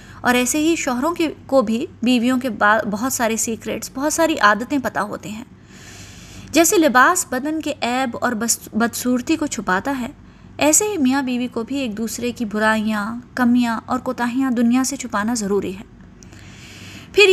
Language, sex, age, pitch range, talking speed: Urdu, female, 20-39, 235-290 Hz, 170 wpm